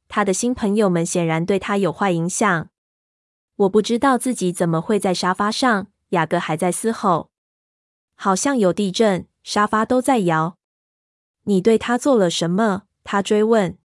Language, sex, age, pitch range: Chinese, female, 20-39, 180-235 Hz